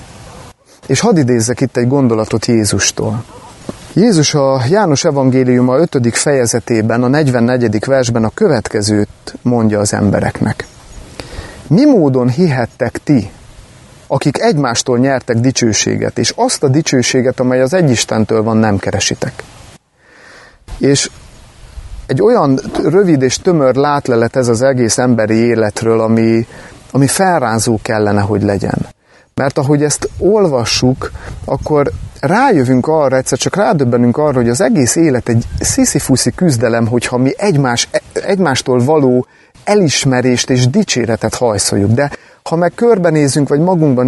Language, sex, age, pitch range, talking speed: Hungarian, male, 30-49, 115-155 Hz, 125 wpm